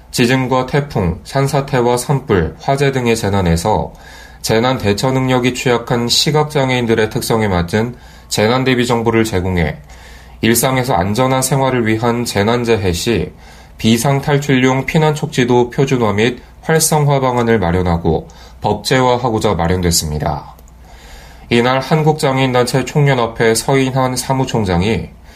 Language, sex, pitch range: Korean, male, 90-130 Hz